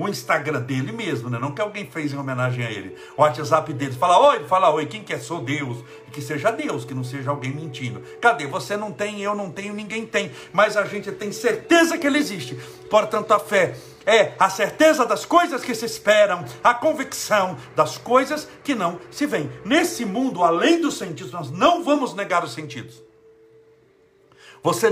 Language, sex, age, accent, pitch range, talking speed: Portuguese, male, 60-79, Brazilian, 150-235 Hz, 200 wpm